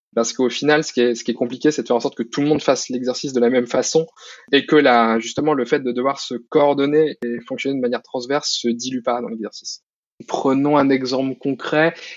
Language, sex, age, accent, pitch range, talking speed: French, male, 20-39, French, 120-145 Hz, 225 wpm